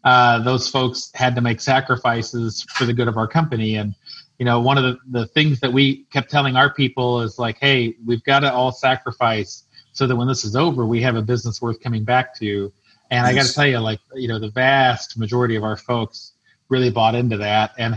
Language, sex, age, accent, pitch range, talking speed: English, male, 30-49, American, 110-135 Hz, 230 wpm